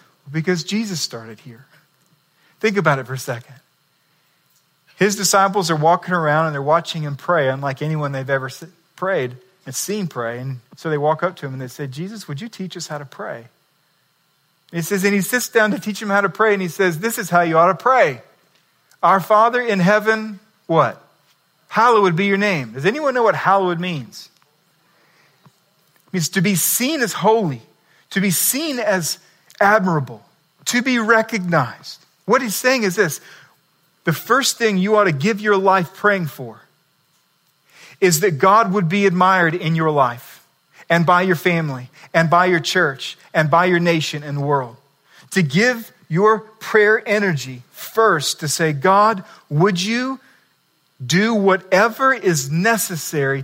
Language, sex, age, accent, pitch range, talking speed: English, male, 40-59, American, 150-205 Hz, 170 wpm